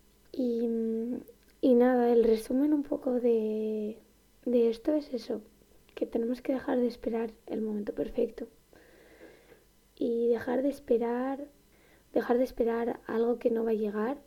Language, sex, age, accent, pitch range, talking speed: Spanish, female, 20-39, Spanish, 215-250 Hz, 145 wpm